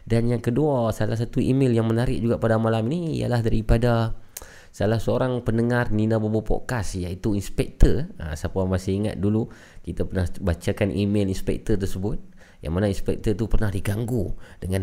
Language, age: Malay, 30-49